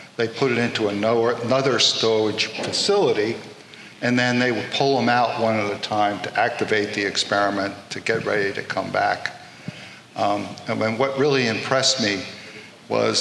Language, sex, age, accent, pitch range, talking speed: English, male, 50-69, American, 105-125 Hz, 160 wpm